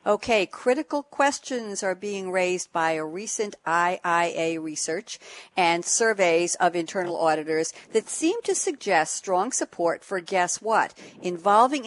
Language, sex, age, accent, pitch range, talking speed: English, female, 60-79, American, 180-245 Hz, 130 wpm